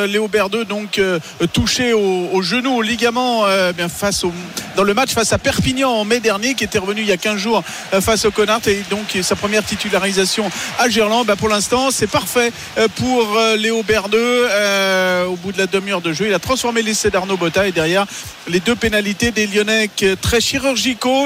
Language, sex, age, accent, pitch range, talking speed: French, male, 40-59, French, 205-250 Hz, 200 wpm